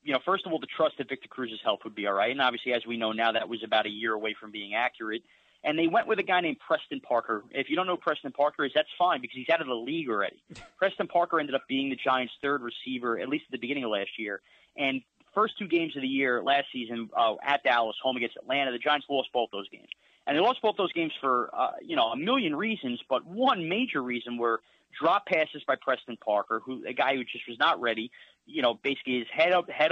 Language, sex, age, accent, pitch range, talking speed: English, male, 30-49, American, 120-185 Hz, 265 wpm